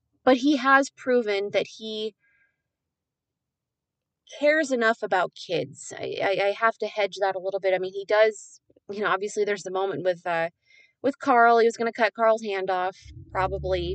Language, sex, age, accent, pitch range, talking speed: English, female, 20-39, American, 175-230 Hz, 185 wpm